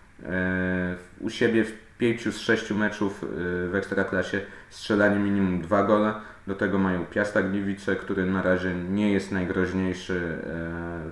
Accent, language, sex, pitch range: native, Polish, male, 90-105 Hz